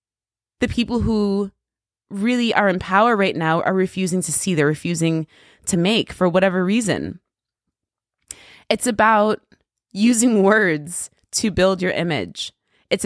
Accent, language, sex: American, English, female